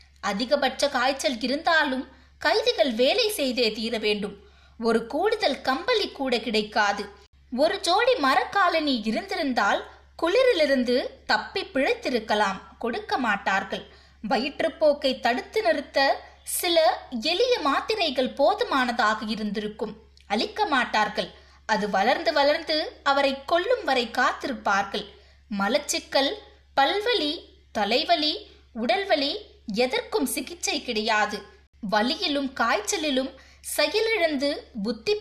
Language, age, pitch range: Tamil, 20-39, 230-330 Hz